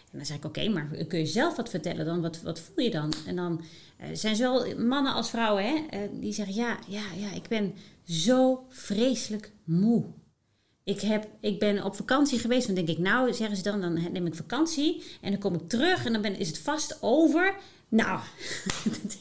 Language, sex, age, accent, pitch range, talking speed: Dutch, female, 30-49, Dutch, 175-230 Hz, 220 wpm